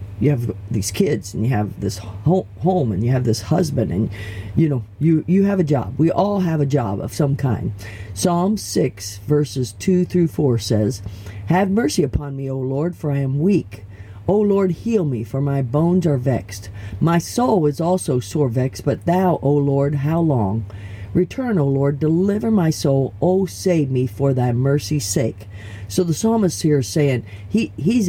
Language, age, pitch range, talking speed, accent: English, 50-69, 105-165 Hz, 190 wpm, American